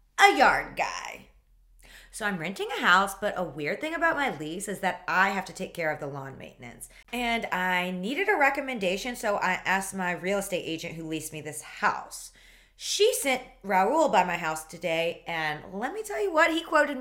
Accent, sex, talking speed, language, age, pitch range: American, female, 205 wpm, English, 20-39, 180-260 Hz